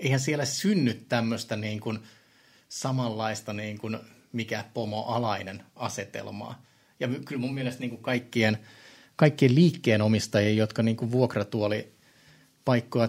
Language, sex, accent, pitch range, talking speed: Finnish, male, native, 115-145 Hz, 100 wpm